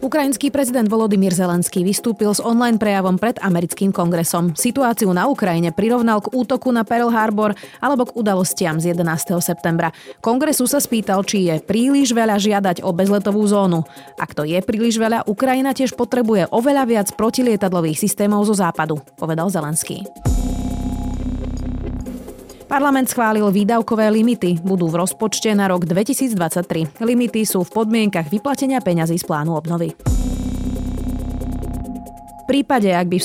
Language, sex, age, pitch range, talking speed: Slovak, female, 30-49, 170-230 Hz, 140 wpm